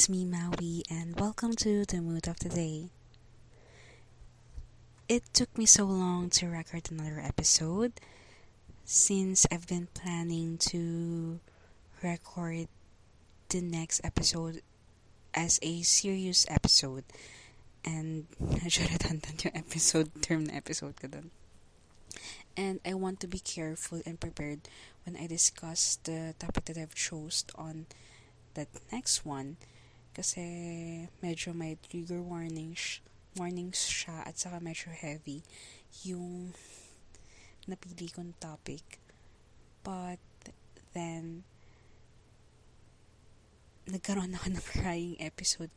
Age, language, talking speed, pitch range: 20-39, English, 110 wpm, 150-175 Hz